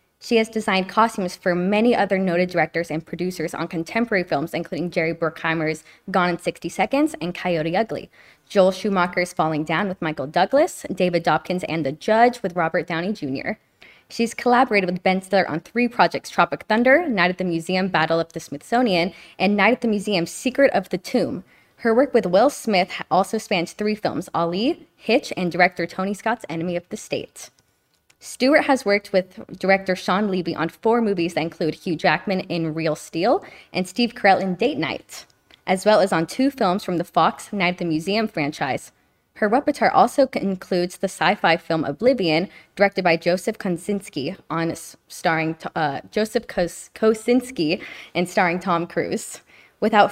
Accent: American